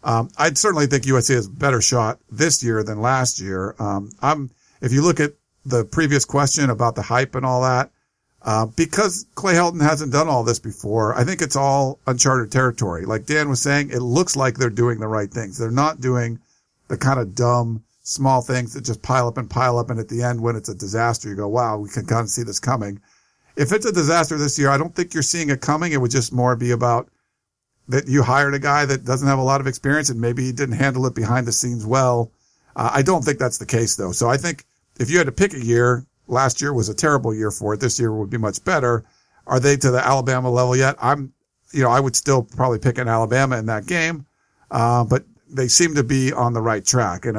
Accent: American